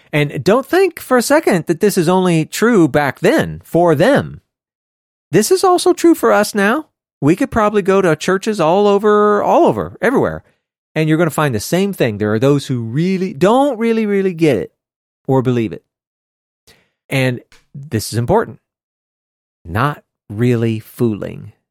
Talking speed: 170 wpm